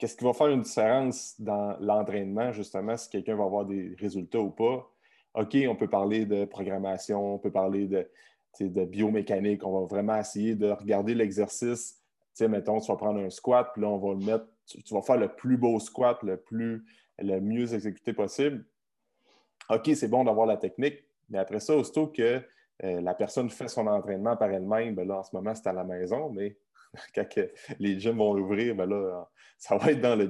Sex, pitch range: male, 100-130 Hz